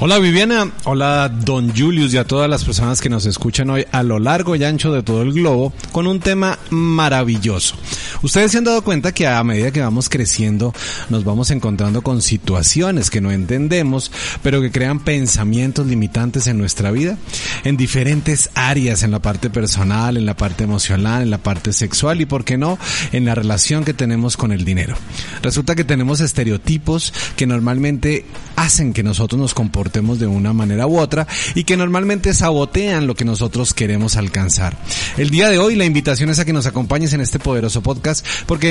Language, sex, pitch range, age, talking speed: Spanish, male, 110-155 Hz, 30-49, 190 wpm